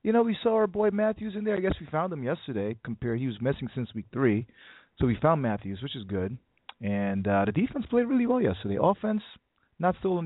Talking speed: 235 wpm